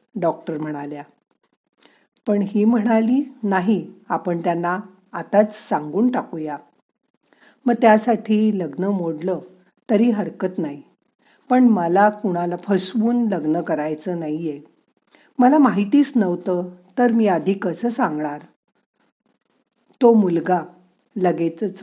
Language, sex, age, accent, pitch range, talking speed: Marathi, female, 50-69, native, 175-235 Hz, 100 wpm